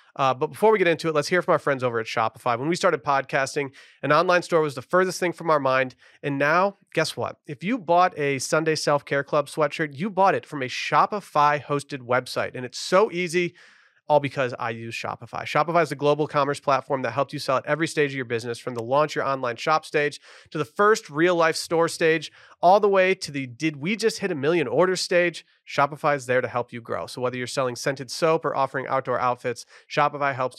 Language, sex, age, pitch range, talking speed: English, male, 30-49, 135-165 Hz, 230 wpm